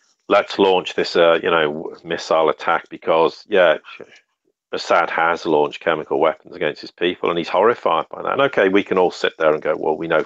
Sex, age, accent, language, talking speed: male, 40-59, British, English, 205 wpm